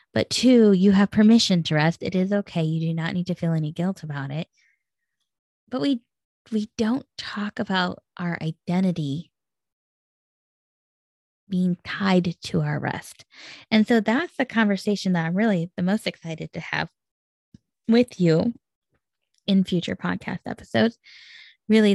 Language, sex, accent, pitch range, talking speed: English, female, American, 170-220 Hz, 145 wpm